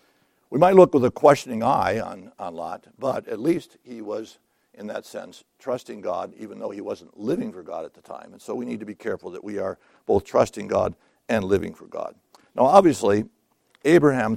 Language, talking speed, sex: English, 210 wpm, male